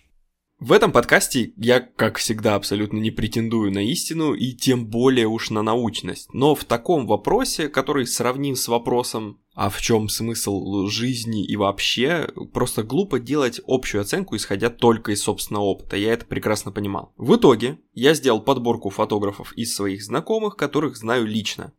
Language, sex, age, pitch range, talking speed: Russian, male, 20-39, 105-125 Hz, 160 wpm